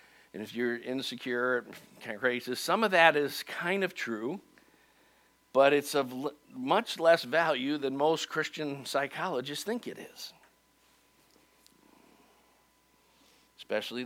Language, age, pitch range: English, 50-69, 115-145 Hz